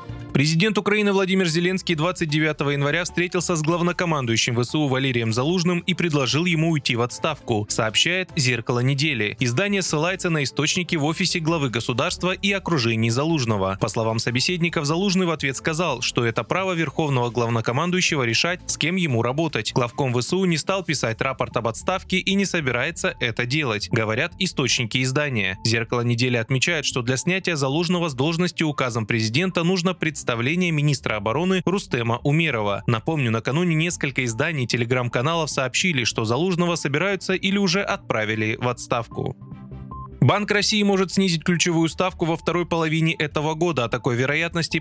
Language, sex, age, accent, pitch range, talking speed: Russian, male, 20-39, native, 120-175 Hz, 145 wpm